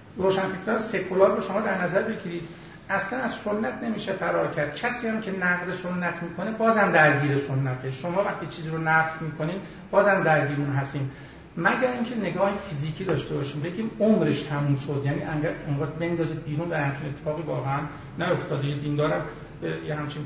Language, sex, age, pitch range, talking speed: Persian, male, 50-69, 145-190 Hz, 170 wpm